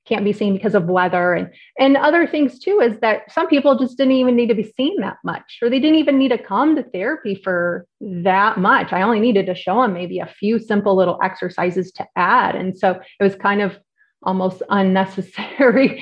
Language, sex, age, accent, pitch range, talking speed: English, female, 30-49, American, 190-235 Hz, 215 wpm